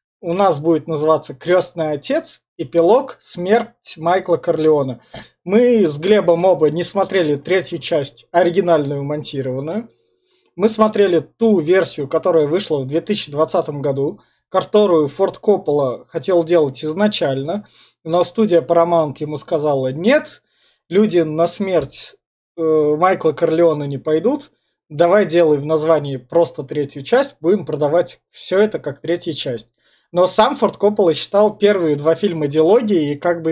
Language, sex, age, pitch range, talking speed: Russian, male, 20-39, 150-195 Hz, 135 wpm